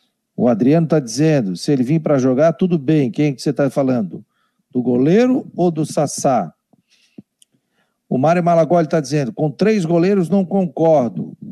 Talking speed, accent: 155 wpm, Brazilian